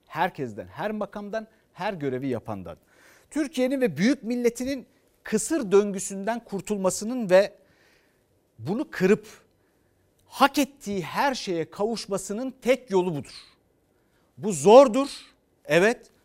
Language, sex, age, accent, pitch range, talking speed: Turkish, male, 60-79, native, 160-230 Hz, 100 wpm